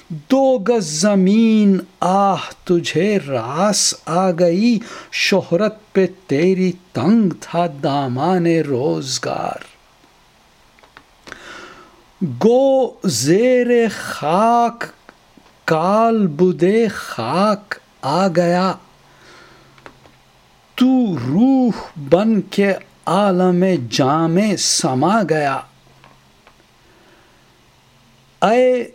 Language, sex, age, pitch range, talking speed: Urdu, male, 60-79, 160-210 Hz, 65 wpm